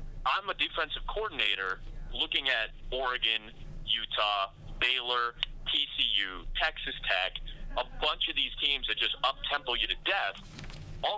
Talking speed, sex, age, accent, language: 135 wpm, male, 30-49, American, English